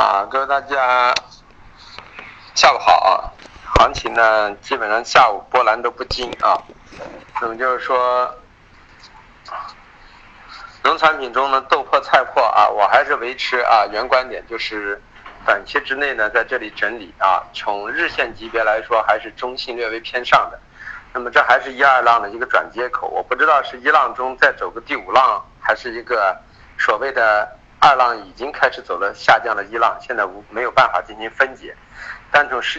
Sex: male